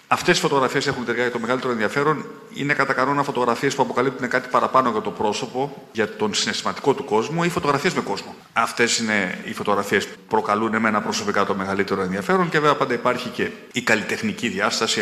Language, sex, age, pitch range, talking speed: Greek, male, 40-59, 120-170 Hz, 190 wpm